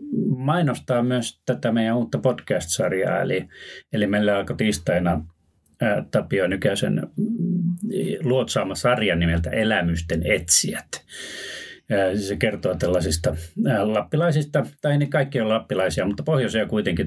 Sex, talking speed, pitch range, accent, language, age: male, 125 wpm, 90-140 Hz, native, Finnish, 30-49